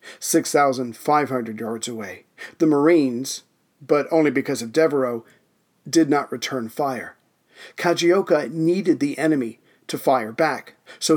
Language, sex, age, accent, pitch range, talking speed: English, male, 40-59, American, 135-165 Hz, 120 wpm